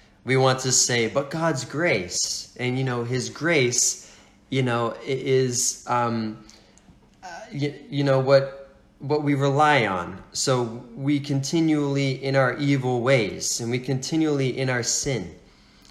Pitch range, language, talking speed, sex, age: 130-160 Hz, English, 145 wpm, male, 20-39